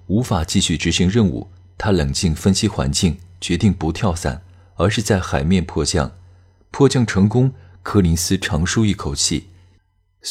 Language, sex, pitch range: Chinese, male, 85-100 Hz